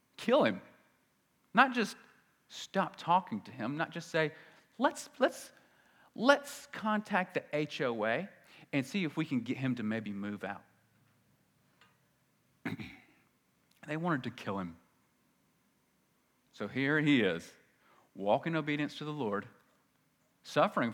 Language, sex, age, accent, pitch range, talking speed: English, male, 40-59, American, 115-175 Hz, 125 wpm